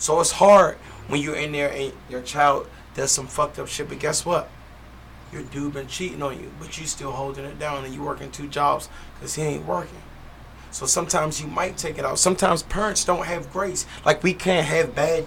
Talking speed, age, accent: 220 wpm, 30-49, American